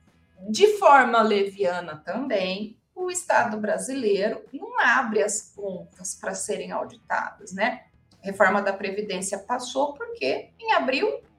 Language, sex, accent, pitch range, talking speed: Portuguese, female, Brazilian, 210-285 Hz, 120 wpm